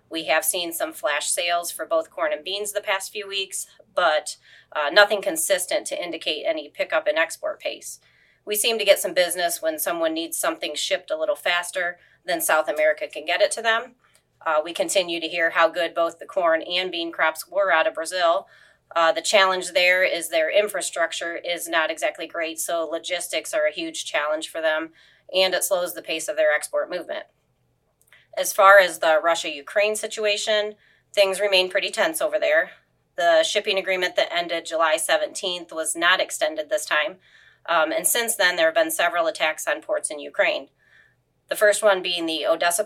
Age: 30-49